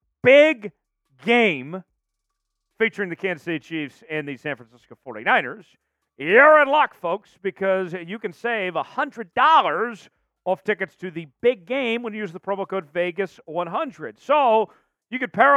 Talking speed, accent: 145 wpm, American